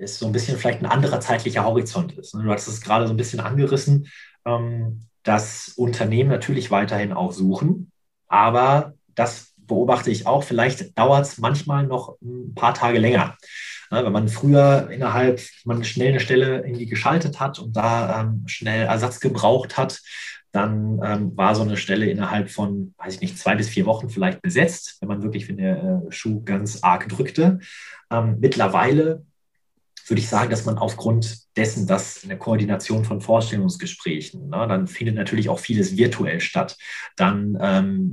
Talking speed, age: 170 wpm, 20-39